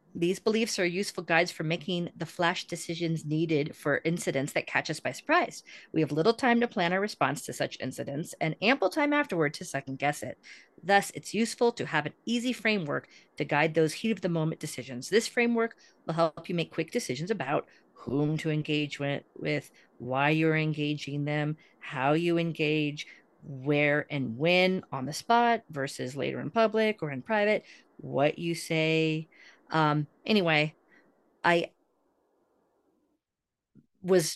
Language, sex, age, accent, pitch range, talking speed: English, female, 40-59, American, 150-185 Hz, 160 wpm